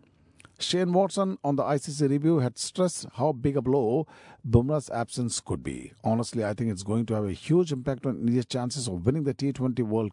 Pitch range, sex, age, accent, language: 110-135 Hz, male, 50-69, Indian, Japanese